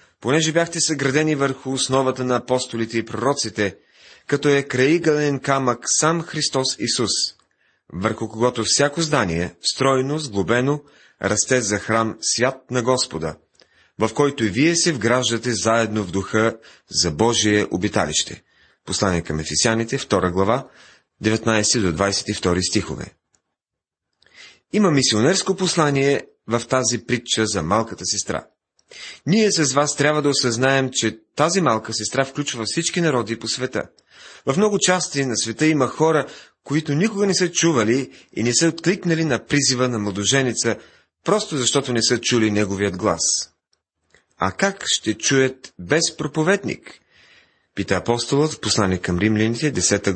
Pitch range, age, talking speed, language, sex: 105-145 Hz, 30-49, 135 wpm, Bulgarian, male